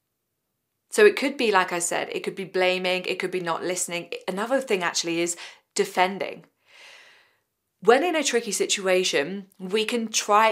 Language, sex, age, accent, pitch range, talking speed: English, female, 20-39, British, 170-225 Hz, 165 wpm